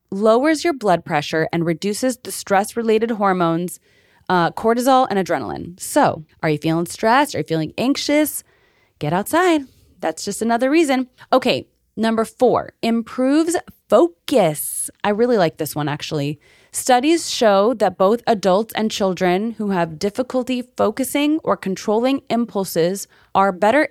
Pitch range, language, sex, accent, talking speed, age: 175-235 Hz, English, female, American, 140 wpm, 20-39